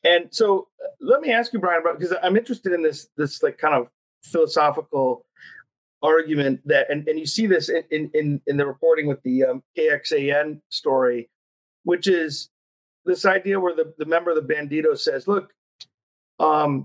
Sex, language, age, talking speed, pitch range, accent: male, English, 40-59, 170 wpm, 150-215 Hz, American